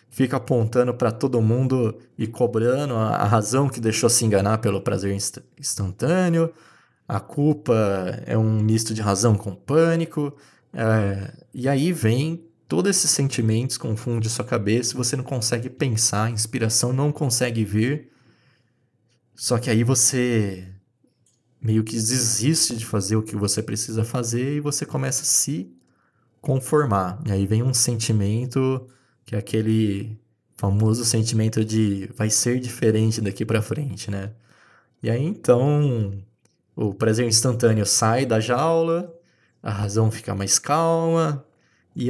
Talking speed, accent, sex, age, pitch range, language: 140 wpm, Brazilian, male, 20-39, 110-130 Hz, Portuguese